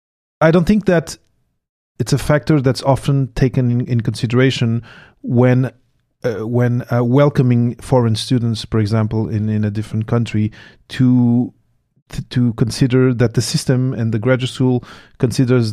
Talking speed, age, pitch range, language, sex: 145 wpm, 30-49, 115-135 Hz, English, male